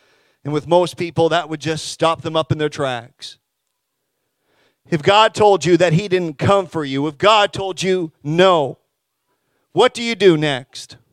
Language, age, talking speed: English, 40-59, 180 wpm